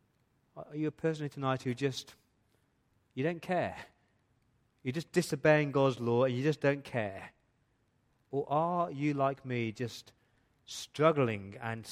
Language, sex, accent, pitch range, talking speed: English, male, British, 110-140 Hz, 140 wpm